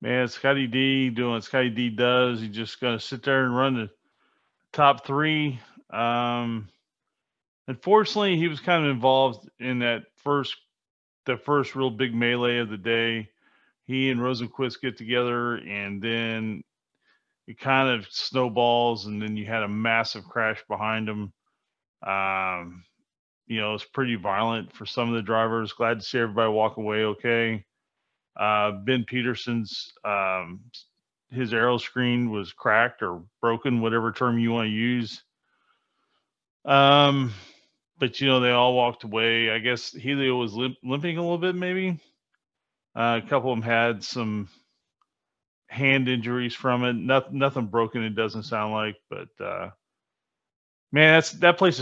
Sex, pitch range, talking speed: male, 115-130 Hz, 155 wpm